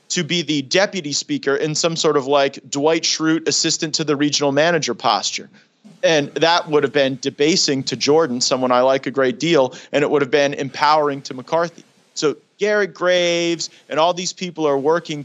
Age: 30-49